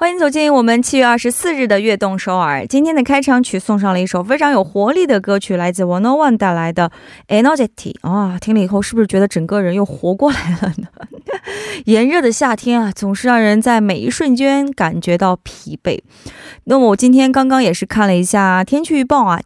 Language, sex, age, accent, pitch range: Korean, female, 20-39, Chinese, 185-270 Hz